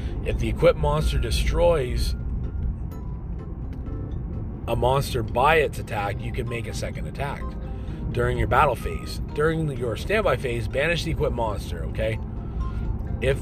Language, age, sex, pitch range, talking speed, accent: English, 30-49, male, 100-115 Hz, 135 wpm, American